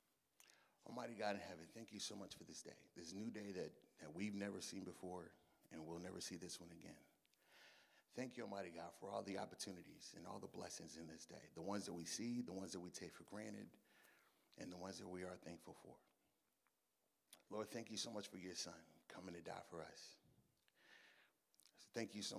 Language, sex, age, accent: English, male, 30-49, American